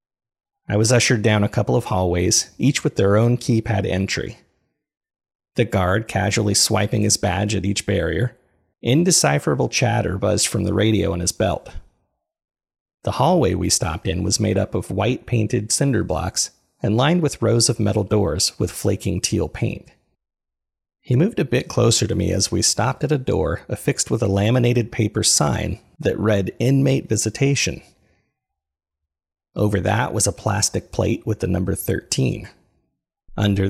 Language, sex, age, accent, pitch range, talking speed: English, male, 30-49, American, 95-120 Hz, 160 wpm